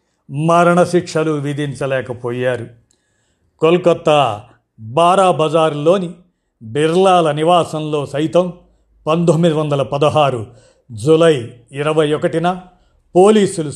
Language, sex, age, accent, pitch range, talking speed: Telugu, male, 50-69, native, 130-165 Hz, 50 wpm